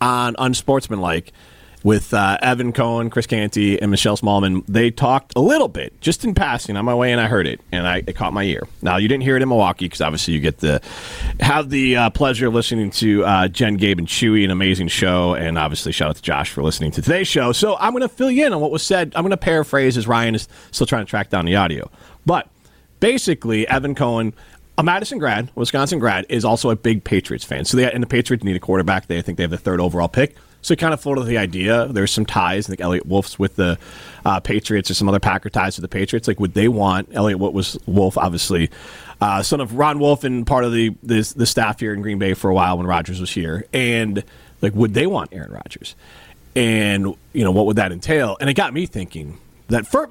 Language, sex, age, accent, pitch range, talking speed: English, male, 40-59, American, 95-125 Hz, 240 wpm